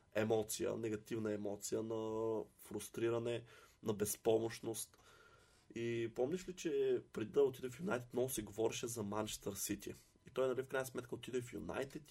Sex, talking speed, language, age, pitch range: male, 155 wpm, Bulgarian, 20-39, 110-130 Hz